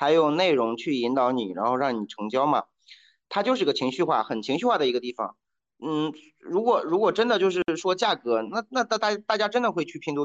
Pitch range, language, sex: 155-245 Hz, Chinese, male